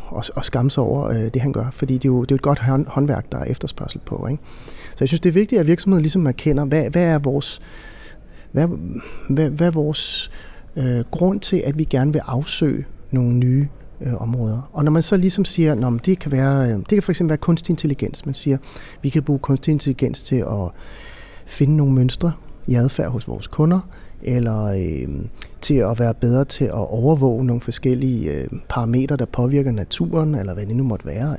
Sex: male